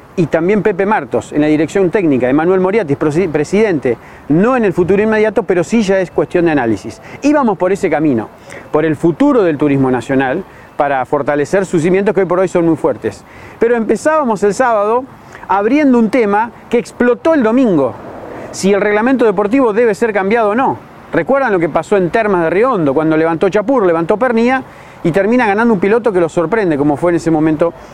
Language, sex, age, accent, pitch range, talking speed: Spanish, male, 40-59, Argentinian, 165-225 Hz, 195 wpm